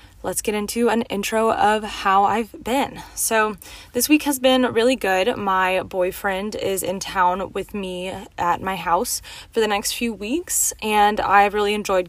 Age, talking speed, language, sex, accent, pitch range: 20-39, 175 wpm, English, female, American, 190-230 Hz